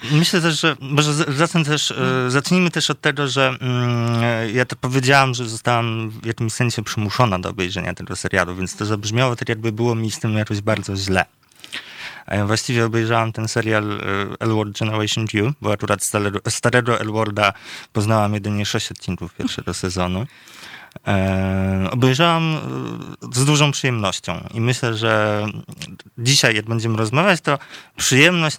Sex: male